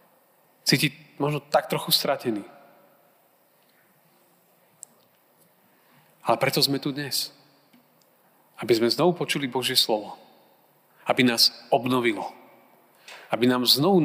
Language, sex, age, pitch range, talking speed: Slovak, male, 30-49, 135-170 Hz, 95 wpm